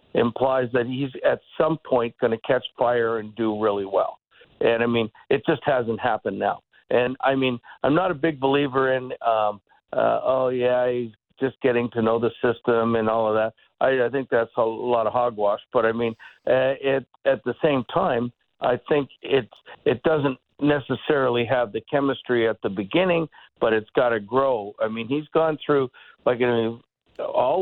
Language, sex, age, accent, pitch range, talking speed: English, male, 60-79, American, 115-140 Hz, 195 wpm